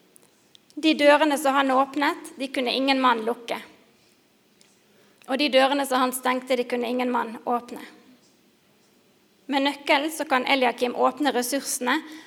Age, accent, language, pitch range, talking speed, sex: 30-49, Swedish, English, 245-280 Hz, 135 wpm, female